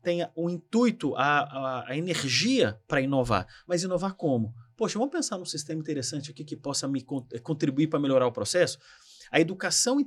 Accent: Brazilian